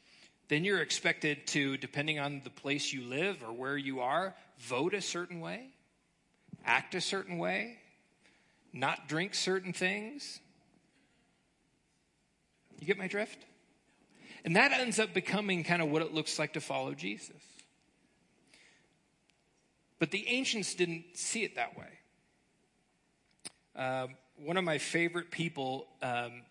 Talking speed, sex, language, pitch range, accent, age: 135 wpm, male, English, 140-185 Hz, American, 40-59